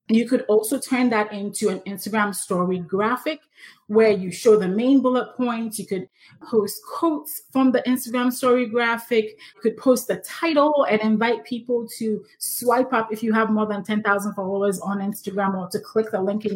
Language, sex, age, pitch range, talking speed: English, female, 30-49, 210-255 Hz, 190 wpm